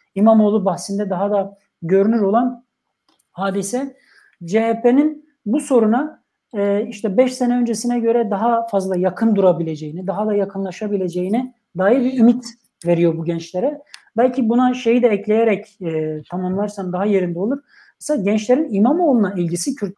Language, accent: Turkish, native